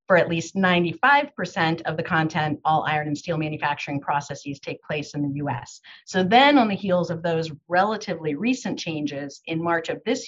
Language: English